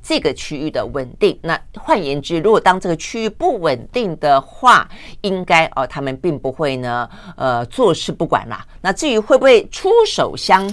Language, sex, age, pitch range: Chinese, female, 50-69, 135-195 Hz